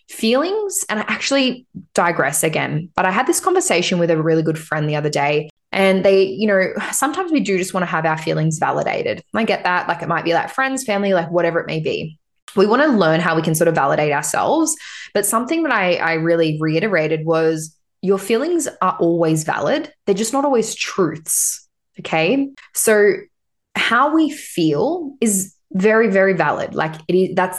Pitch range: 165-220 Hz